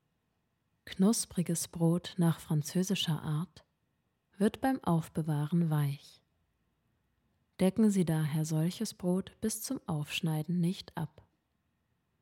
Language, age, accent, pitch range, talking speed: German, 20-39, German, 150-200 Hz, 95 wpm